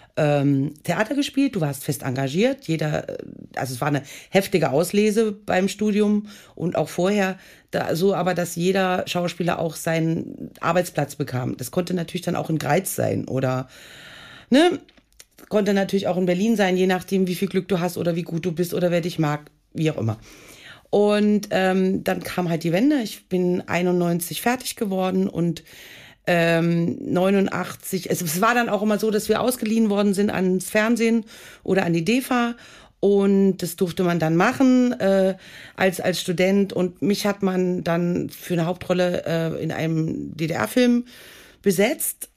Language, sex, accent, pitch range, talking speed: German, female, German, 165-195 Hz, 165 wpm